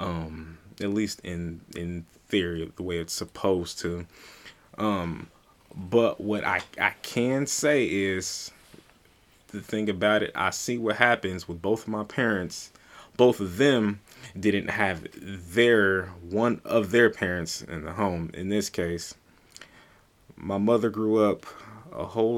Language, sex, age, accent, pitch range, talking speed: English, male, 20-39, American, 90-105 Hz, 145 wpm